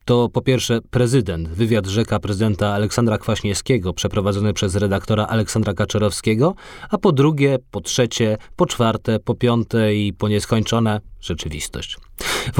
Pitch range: 105-130 Hz